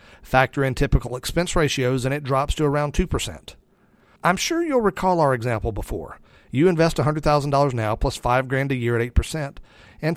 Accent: American